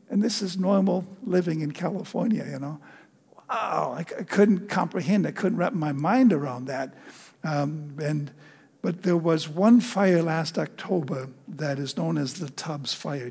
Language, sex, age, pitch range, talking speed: English, male, 60-79, 150-200 Hz, 170 wpm